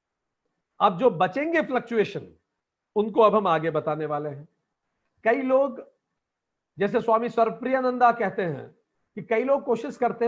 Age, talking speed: 50-69, 140 wpm